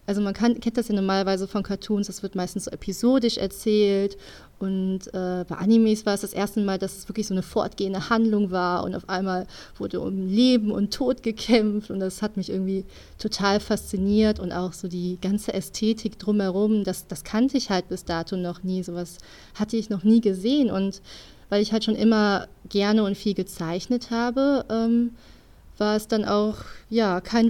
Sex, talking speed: female, 190 wpm